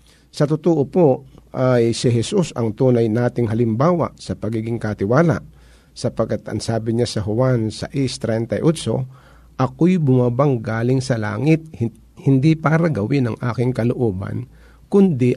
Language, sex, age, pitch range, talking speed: Filipino, male, 50-69, 115-155 Hz, 125 wpm